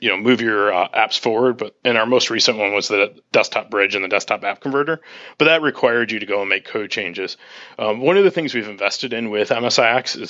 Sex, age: male, 30-49